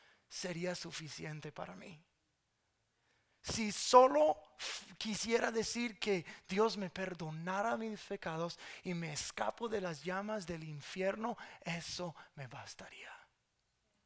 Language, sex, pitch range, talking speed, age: English, male, 175-210 Hz, 105 wpm, 30-49